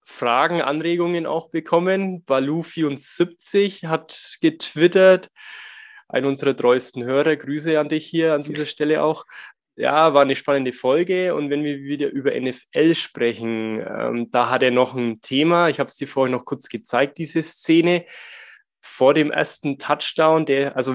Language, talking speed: German, 155 wpm